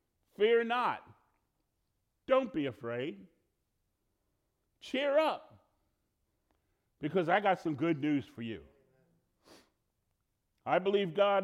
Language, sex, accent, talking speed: English, male, American, 95 wpm